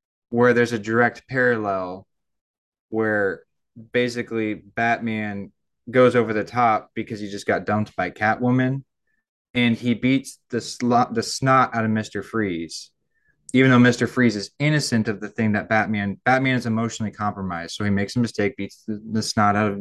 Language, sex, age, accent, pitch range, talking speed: English, male, 20-39, American, 105-120 Hz, 165 wpm